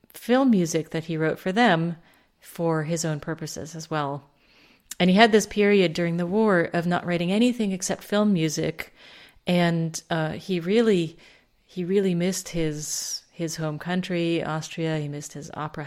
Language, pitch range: English, 155-180 Hz